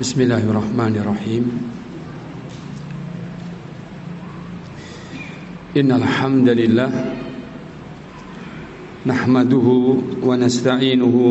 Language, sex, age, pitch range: Indonesian, male, 50-69, 120-130 Hz